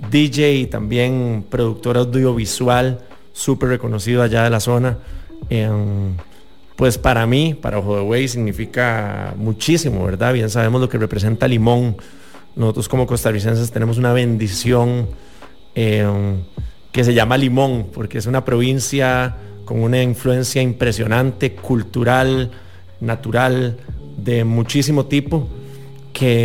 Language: English